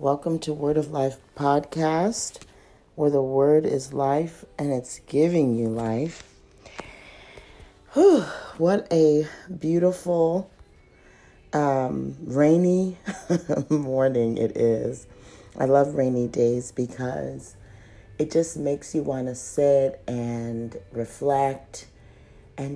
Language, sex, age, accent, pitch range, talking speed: English, female, 40-59, American, 115-150 Hz, 105 wpm